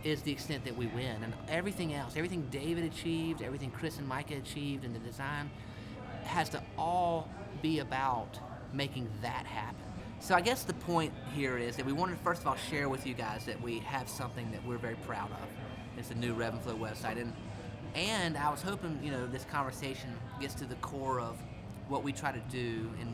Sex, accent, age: male, American, 30-49